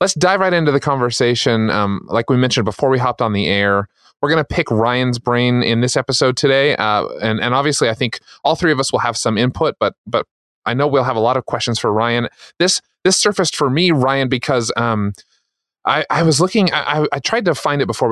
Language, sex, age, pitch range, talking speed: English, male, 30-49, 110-140 Hz, 235 wpm